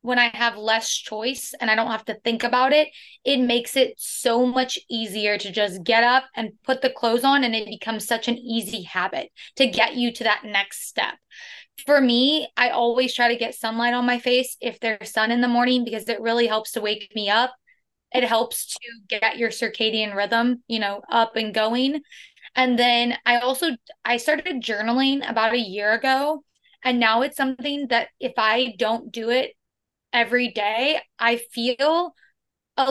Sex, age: female, 20-39